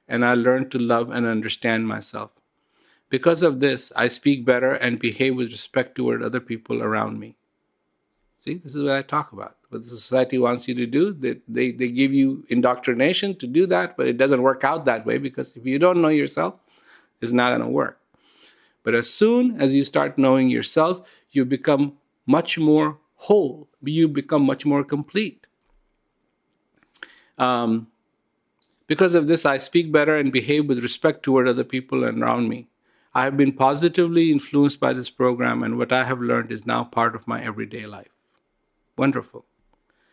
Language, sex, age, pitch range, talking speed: English, male, 50-69, 125-150 Hz, 180 wpm